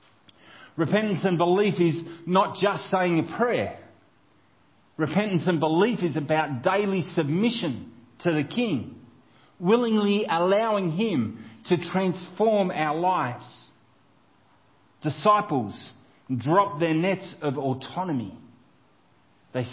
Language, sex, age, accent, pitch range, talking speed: English, male, 40-59, Australian, 135-195 Hz, 100 wpm